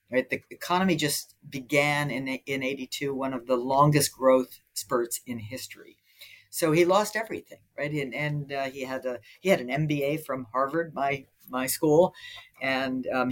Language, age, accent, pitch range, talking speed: English, 50-69, American, 130-175 Hz, 170 wpm